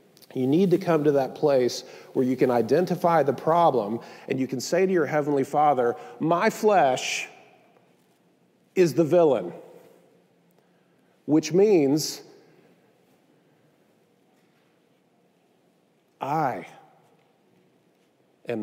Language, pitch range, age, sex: English, 130-190 Hz, 50-69, male